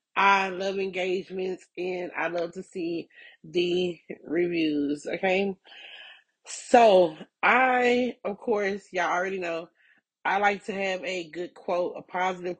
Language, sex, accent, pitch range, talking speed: English, female, American, 180-230 Hz, 130 wpm